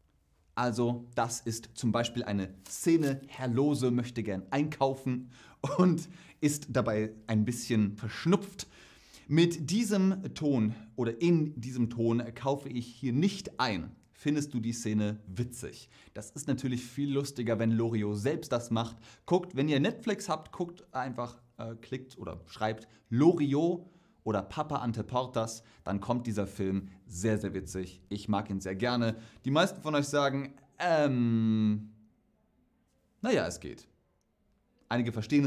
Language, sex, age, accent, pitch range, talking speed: German, male, 30-49, German, 105-140 Hz, 145 wpm